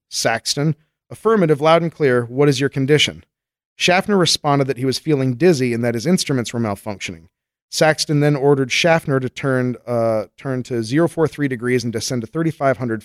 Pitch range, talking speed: 115-145 Hz, 170 wpm